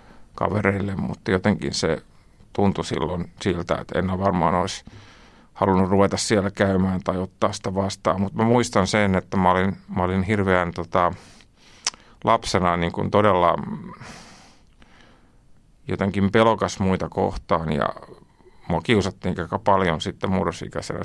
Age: 50-69